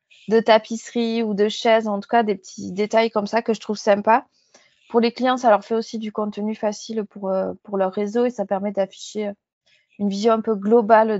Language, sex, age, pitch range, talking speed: French, female, 20-39, 200-230 Hz, 215 wpm